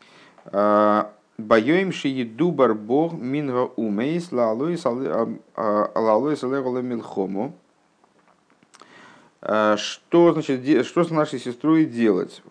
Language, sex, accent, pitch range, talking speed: Russian, male, native, 115-155 Hz, 70 wpm